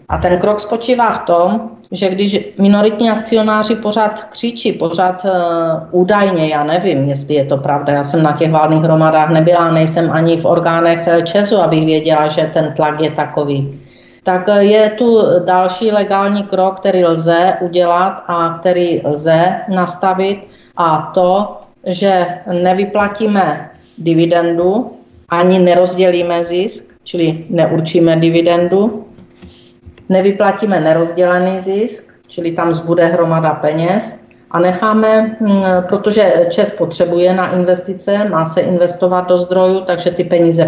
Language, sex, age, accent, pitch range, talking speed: Czech, female, 40-59, native, 165-200 Hz, 125 wpm